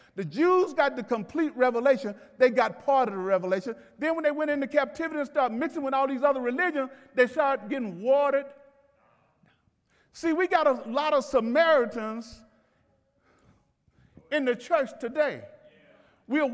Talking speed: 150 wpm